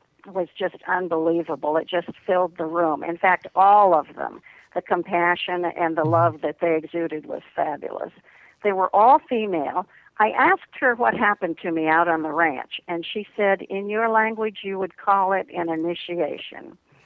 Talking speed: 175 wpm